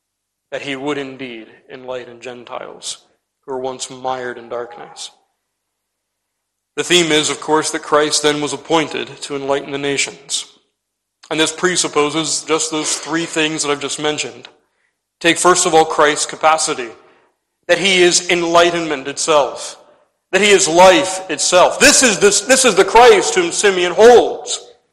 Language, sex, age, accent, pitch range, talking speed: English, male, 40-59, American, 150-225 Hz, 150 wpm